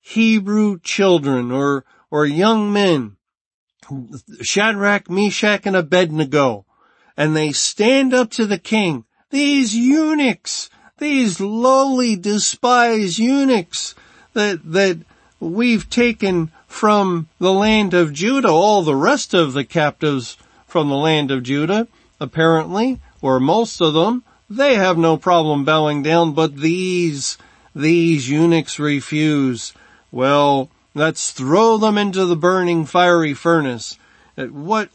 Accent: American